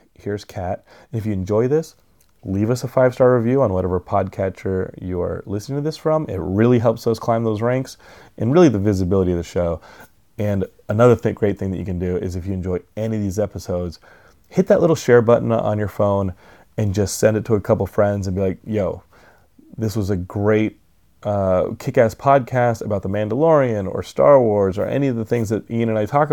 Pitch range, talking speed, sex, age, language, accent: 90-115 Hz, 210 wpm, male, 30-49, English, American